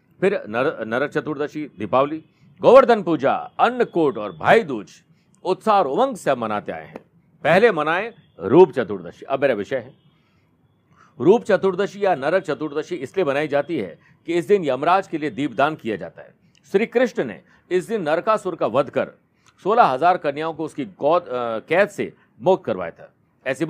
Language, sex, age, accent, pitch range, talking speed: Hindi, male, 50-69, native, 145-185 Hz, 165 wpm